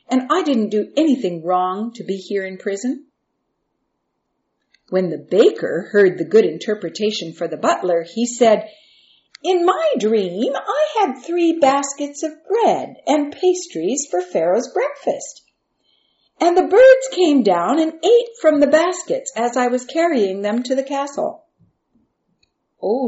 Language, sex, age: English, female, 50-69